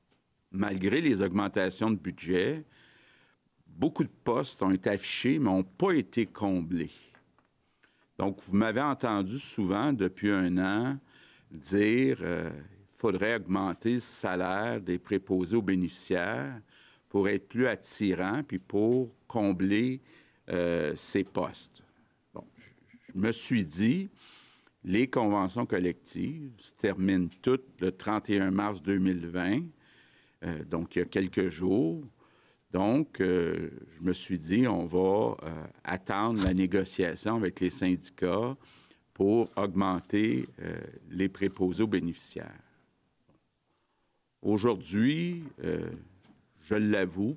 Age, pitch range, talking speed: 50-69, 90-115 Hz, 120 wpm